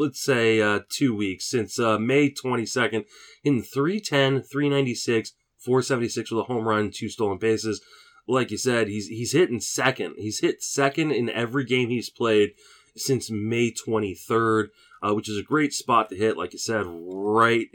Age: 20-39